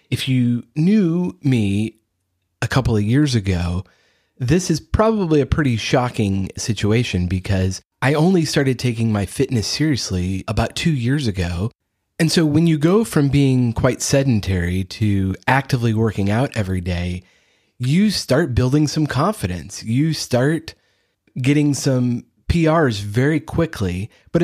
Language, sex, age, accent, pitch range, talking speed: English, male, 30-49, American, 105-140 Hz, 135 wpm